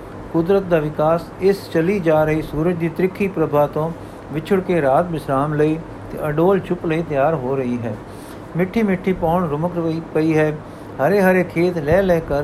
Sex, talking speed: male, 185 wpm